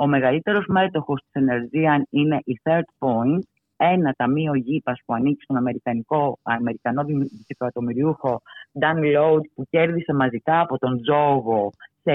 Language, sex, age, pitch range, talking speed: Greek, female, 30-49, 125-155 Hz, 125 wpm